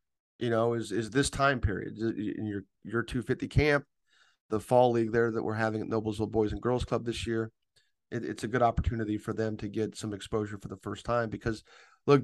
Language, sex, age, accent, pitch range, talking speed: English, male, 30-49, American, 115-140 Hz, 205 wpm